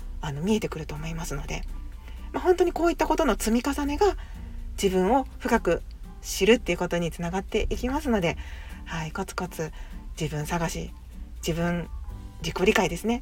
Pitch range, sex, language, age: 165-225 Hz, female, Japanese, 40-59